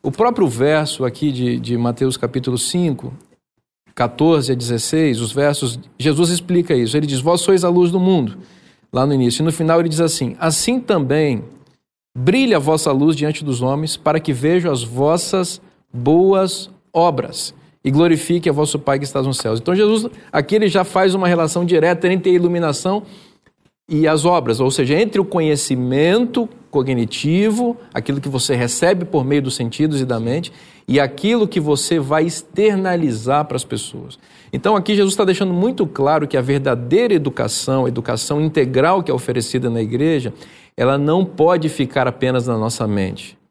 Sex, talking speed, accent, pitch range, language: male, 175 wpm, Brazilian, 130-180 Hz, Portuguese